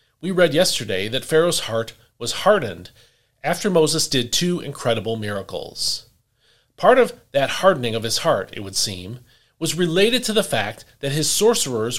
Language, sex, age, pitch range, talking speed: English, male, 40-59, 115-170 Hz, 160 wpm